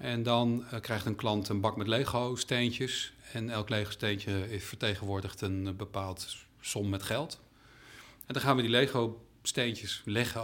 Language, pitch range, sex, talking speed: Dutch, 110-135 Hz, male, 170 wpm